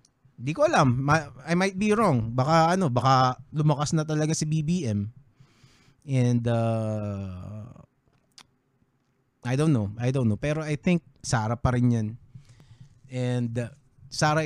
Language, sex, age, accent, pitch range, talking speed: Filipino, male, 20-39, native, 125-145 Hz, 135 wpm